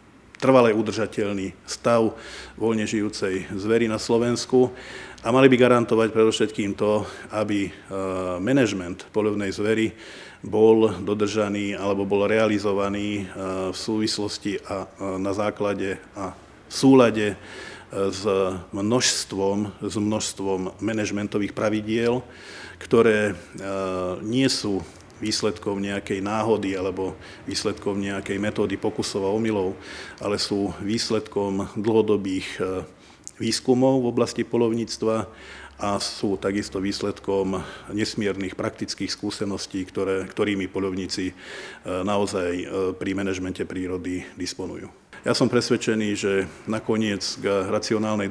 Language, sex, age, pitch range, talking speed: Slovak, male, 50-69, 95-110 Hz, 100 wpm